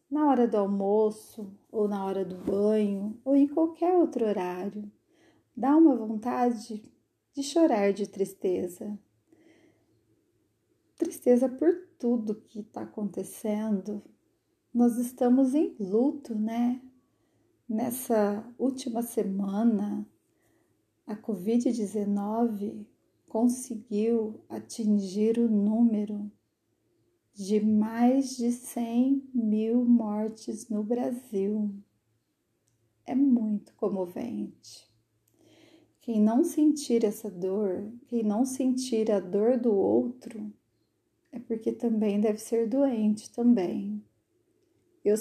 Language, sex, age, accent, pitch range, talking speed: Portuguese, female, 40-59, Brazilian, 210-250 Hz, 95 wpm